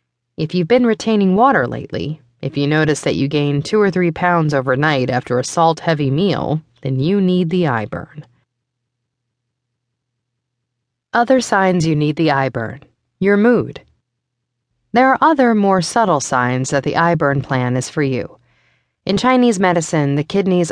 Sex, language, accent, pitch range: female, English, American, 130-190 Hz